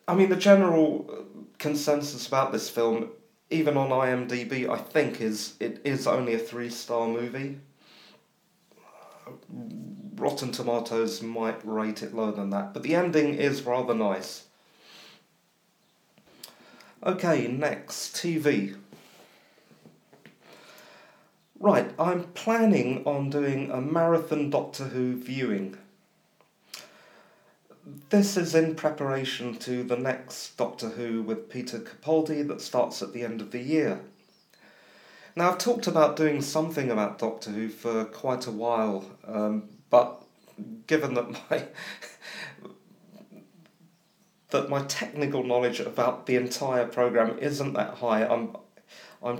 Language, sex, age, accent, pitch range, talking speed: English, male, 40-59, British, 115-155 Hz, 120 wpm